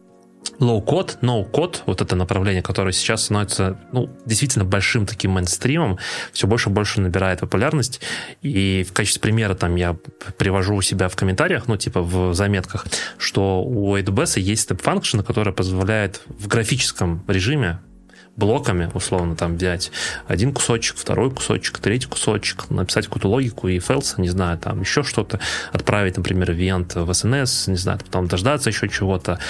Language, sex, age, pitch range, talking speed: Russian, male, 20-39, 90-115 Hz, 155 wpm